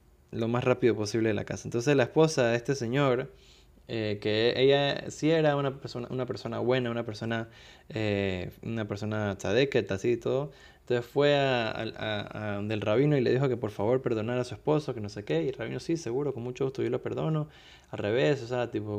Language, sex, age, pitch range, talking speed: Spanish, male, 20-39, 110-130 Hz, 210 wpm